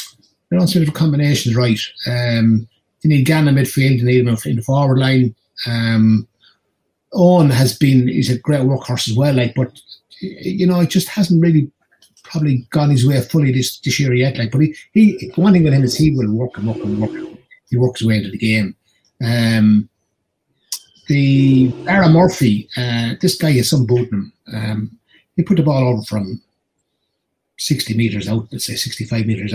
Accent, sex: British, male